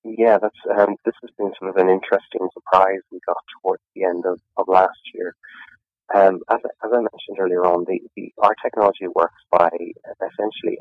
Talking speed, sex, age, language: 195 wpm, male, 30-49, English